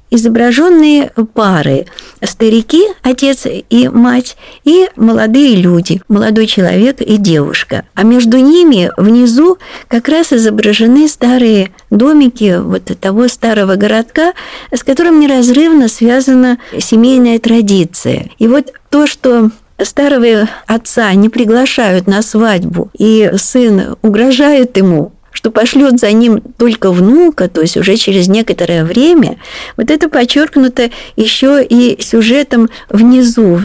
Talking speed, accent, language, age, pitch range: 115 wpm, native, Russian, 50-69, 205-260 Hz